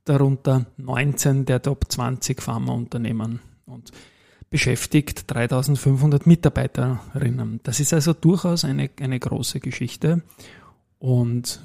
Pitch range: 120-150 Hz